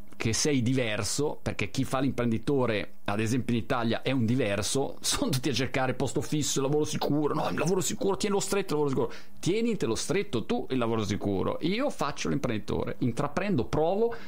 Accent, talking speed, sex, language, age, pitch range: native, 190 wpm, male, Italian, 30-49, 125-180 Hz